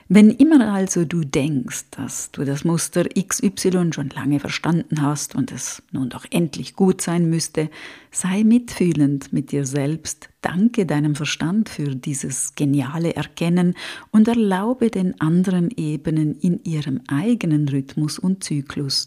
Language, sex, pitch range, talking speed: German, female, 145-200 Hz, 140 wpm